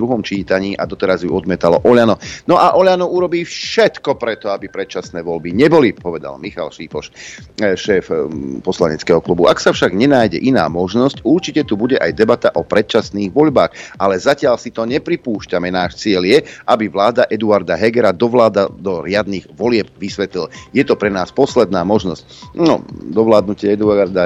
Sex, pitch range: male, 95-130 Hz